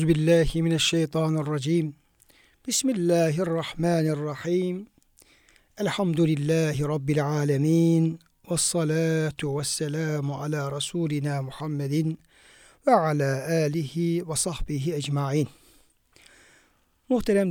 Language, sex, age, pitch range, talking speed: Turkish, male, 60-79, 150-180 Hz, 60 wpm